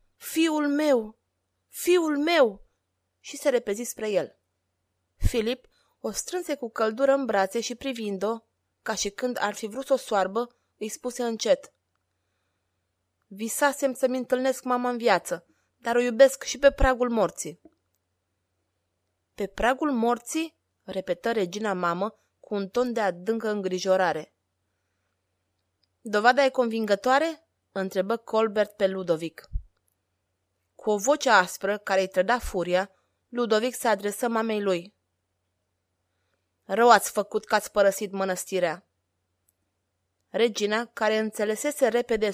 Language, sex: Romanian, female